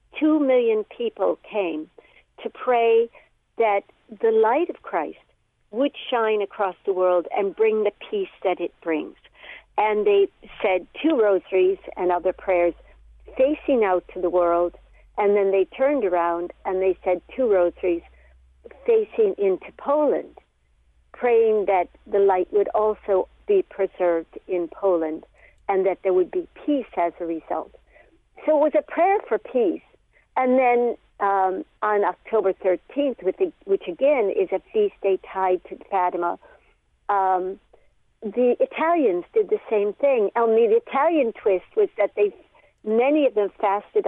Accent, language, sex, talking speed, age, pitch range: American, English, female, 150 wpm, 60-79, 185-290 Hz